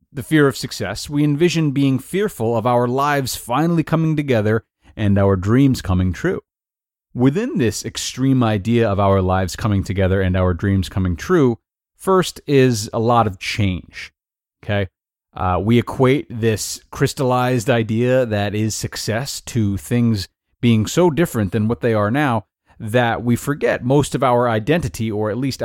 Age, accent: 30-49, American